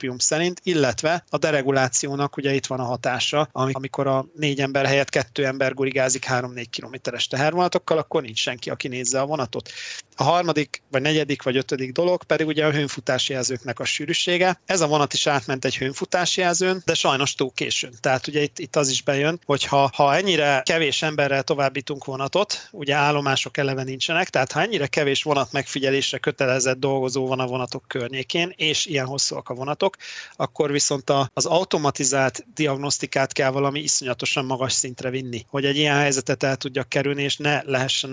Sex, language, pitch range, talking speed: male, Hungarian, 130-150 Hz, 170 wpm